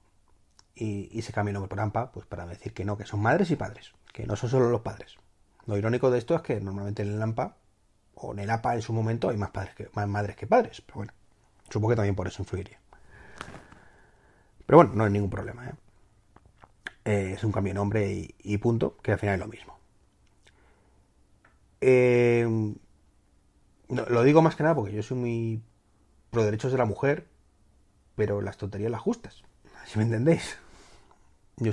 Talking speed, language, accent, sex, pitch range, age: 195 wpm, Spanish, Spanish, male, 100-115 Hz, 30-49